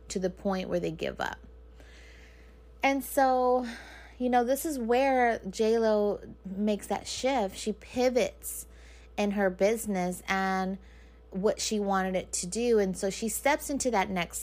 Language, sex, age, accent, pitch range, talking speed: English, female, 20-39, American, 185-220 Hz, 155 wpm